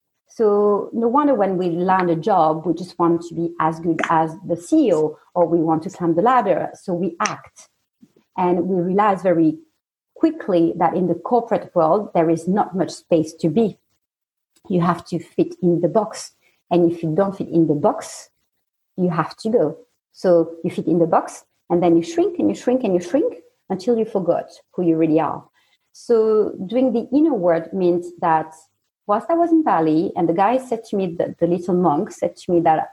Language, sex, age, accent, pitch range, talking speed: English, female, 40-59, French, 170-255 Hz, 205 wpm